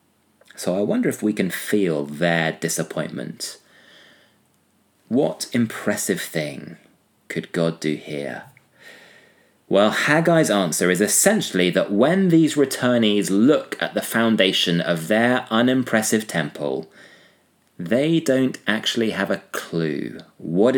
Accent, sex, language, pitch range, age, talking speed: British, male, English, 85-120 Hz, 30-49, 115 wpm